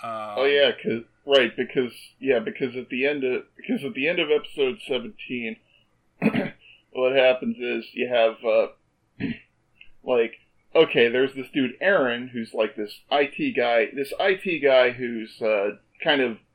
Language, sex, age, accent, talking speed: English, male, 40-59, American, 150 wpm